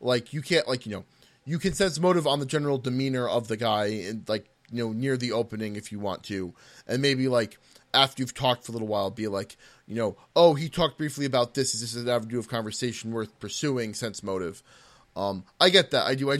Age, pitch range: 20-39, 115-150 Hz